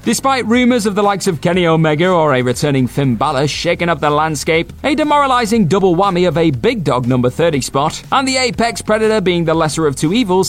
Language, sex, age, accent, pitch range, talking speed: English, male, 30-49, British, 145-220 Hz, 215 wpm